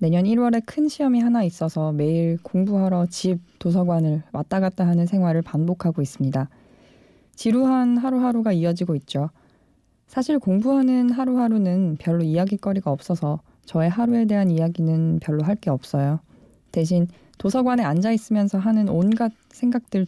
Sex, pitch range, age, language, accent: female, 160-220 Hz, 20-39, Korean, native